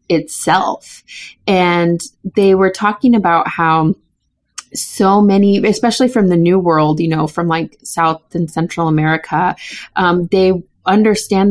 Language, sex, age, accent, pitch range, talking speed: English, female, 30-49, American, 160-200 Hz, 130 wpm